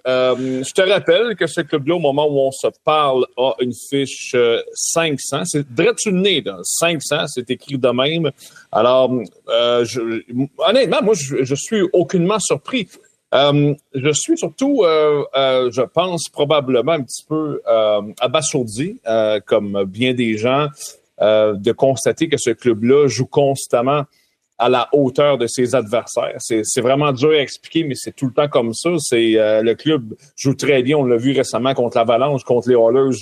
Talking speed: 180 wpm